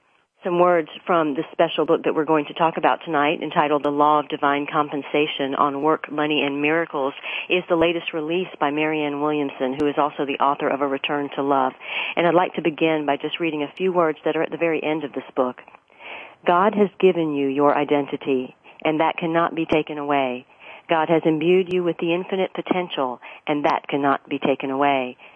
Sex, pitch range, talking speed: female, 145-170 Hz, 205 wpm